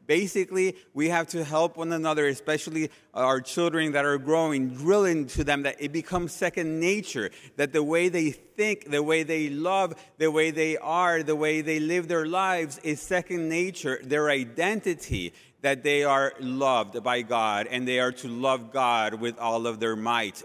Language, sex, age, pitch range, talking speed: English, male, 30-49, 120-160 Hz, 180 wpm